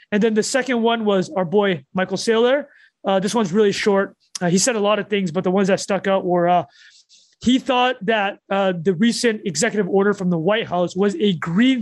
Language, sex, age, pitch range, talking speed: English, male, 20-39, 190-235 Hz, 230 wpm